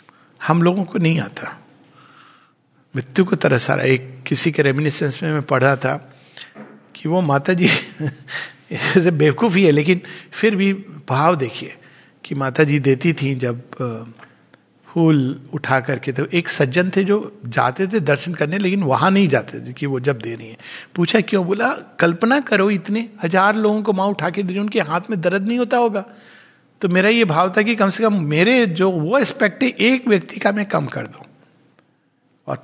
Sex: male